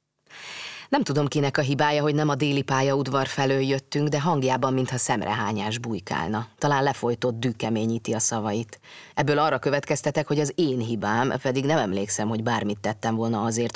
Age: 30-49